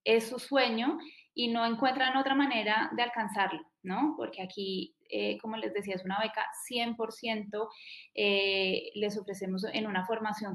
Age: 10-29